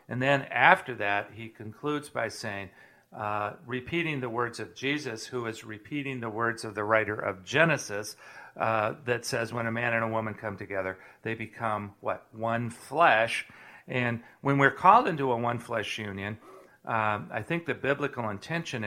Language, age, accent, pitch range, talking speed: English, 50-69, American, 105-130 Hz, 175 wpm